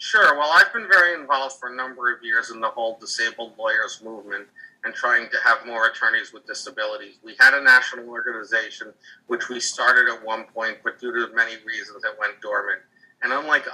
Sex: male